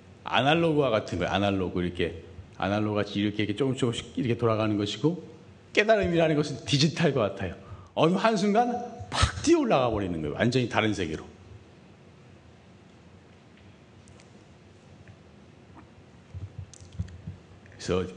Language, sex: Korean, male